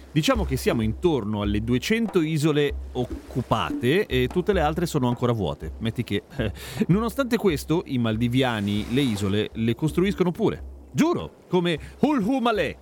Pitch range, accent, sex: 115-175 Hz, native, male